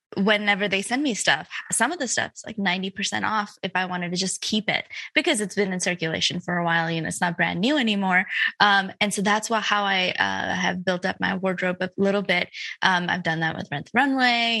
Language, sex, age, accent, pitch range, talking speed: English, female, 20-39, American, 180-215 Hz, 240 wpm